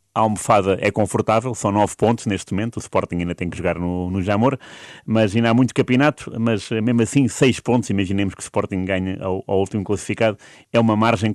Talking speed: 210 wpm